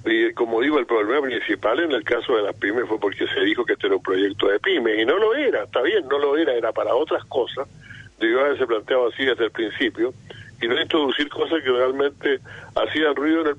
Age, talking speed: 50-69, 245 wpm